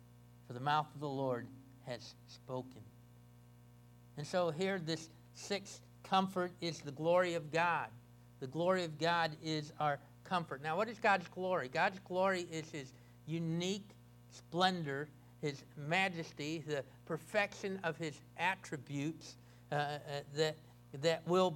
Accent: American